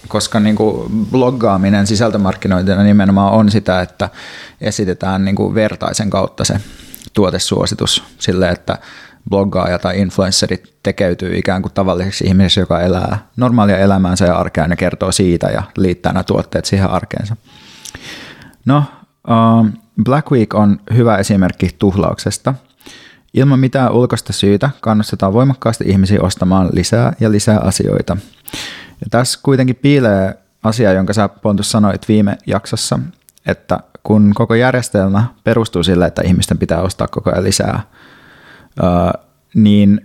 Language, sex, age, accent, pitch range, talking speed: Finnish, male, 30-49, native, 95-110 Hz, 125 wpm